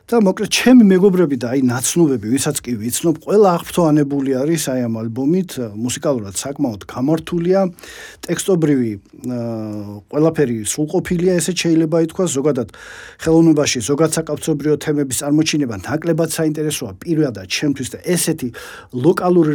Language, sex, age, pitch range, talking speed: English, male, 50-69, 130-175 Hz, 120 wpm